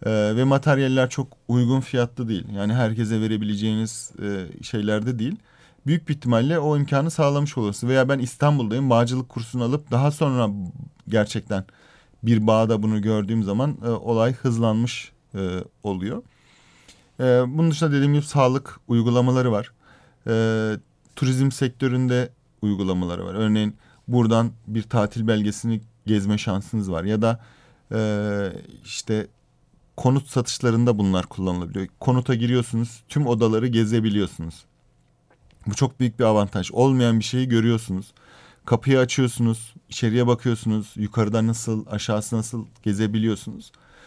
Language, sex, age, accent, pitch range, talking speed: Turkish, male, 40-59, native, 110-135 Hz, 115 wpm